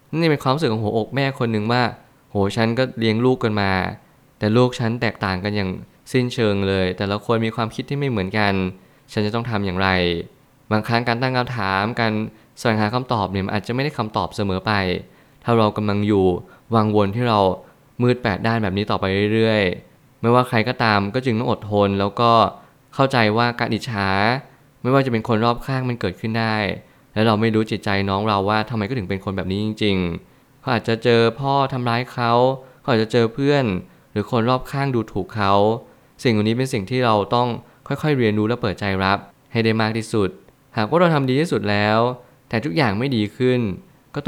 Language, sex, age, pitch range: Thai, male, 20-39, 105-125 Hz